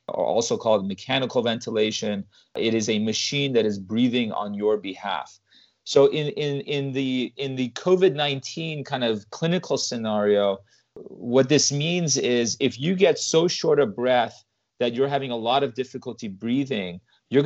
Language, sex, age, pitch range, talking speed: English, male, 30-49, 115-140 Hz, 160 wpm